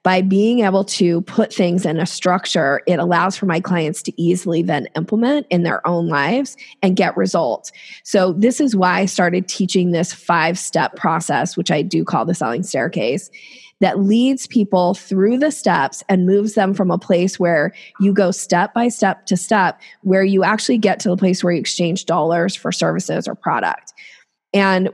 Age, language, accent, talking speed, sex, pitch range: 20-39, English, American, 190 wpm, female, 175-215 Hz